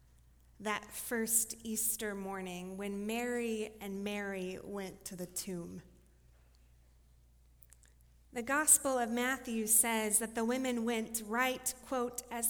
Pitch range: 180-255 Hz